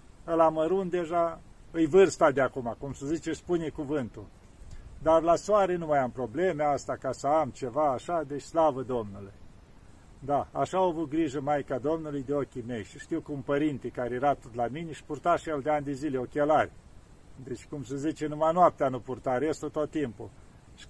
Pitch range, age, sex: 130-165 Hz, 50-69, male